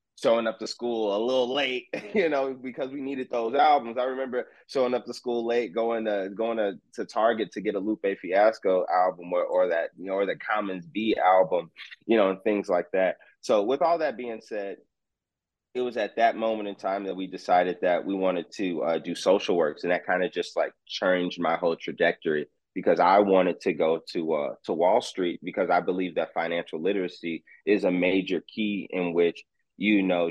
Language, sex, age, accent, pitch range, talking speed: English, male, 30-49, American, 90-120 Hz, 210 wpm